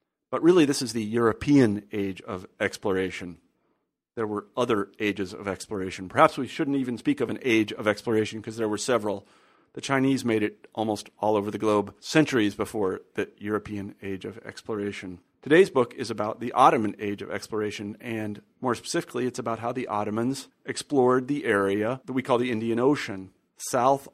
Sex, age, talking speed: male, 40-59, 180 wpm